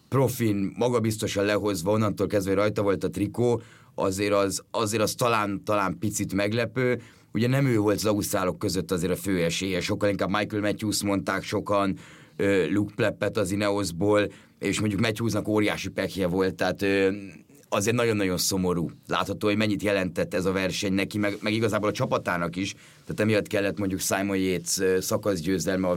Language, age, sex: Hungarian, 30-49, male